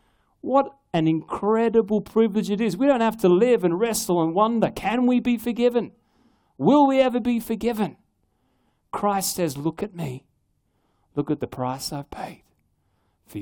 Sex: male